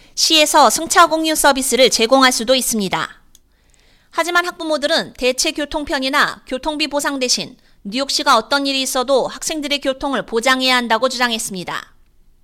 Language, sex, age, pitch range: Korean, female, 30-49, 250-300 Hz